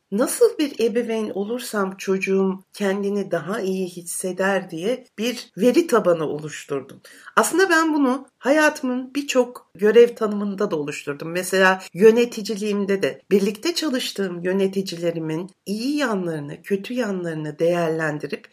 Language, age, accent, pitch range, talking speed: Turkish, 60-79, native, 175-235 Hz, 110 wpm